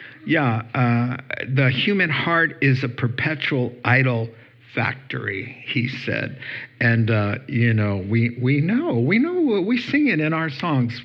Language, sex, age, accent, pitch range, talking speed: English, male, 60-79, American, 120-150 Hz, 145 wpm